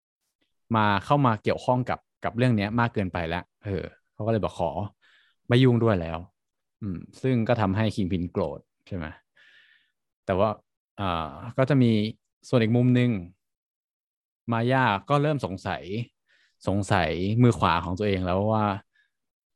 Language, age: Thai, 20-39